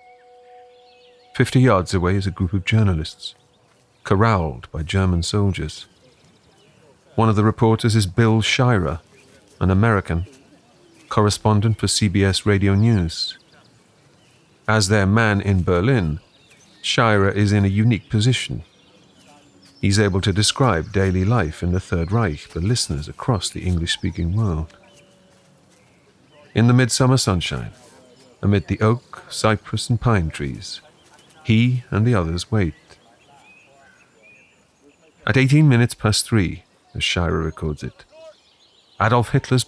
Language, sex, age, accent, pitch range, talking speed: English, male, 40-59, British, 90-125 Hz, 120 wpm